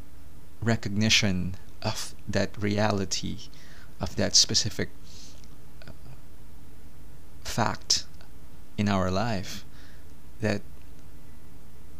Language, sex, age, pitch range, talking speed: English, male, 20-39, 75-105 Hz, 60 wpm